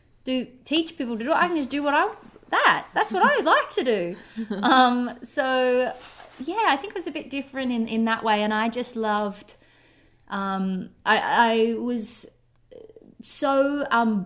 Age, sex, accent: 20-39, female, Australian